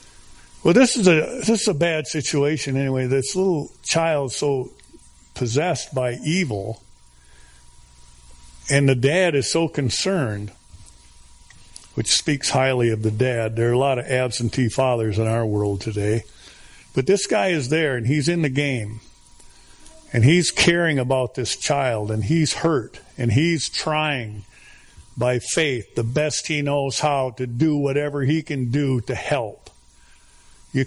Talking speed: 155 wpm